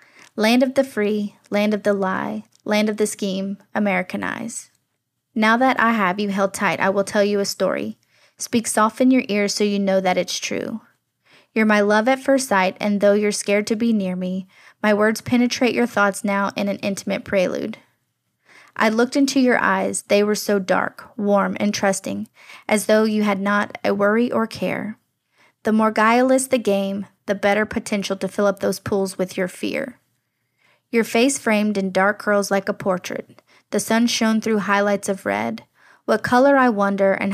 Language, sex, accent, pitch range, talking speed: English, female, American, 195-225 Hz, 190 wpm